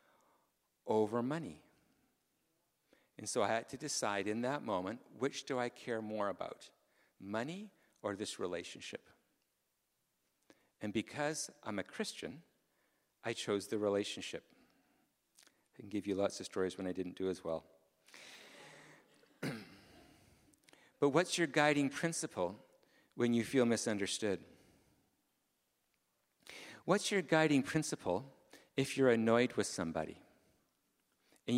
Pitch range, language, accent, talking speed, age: 110-150 Hz, English, American, 120 wpm, 50-69